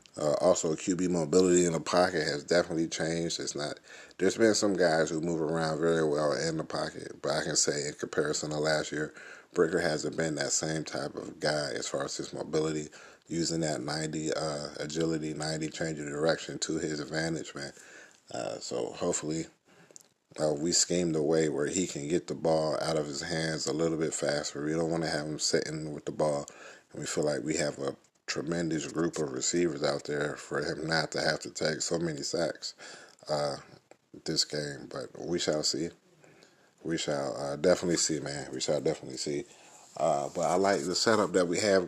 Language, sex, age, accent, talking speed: English, male, 30-49, American, 200 wpm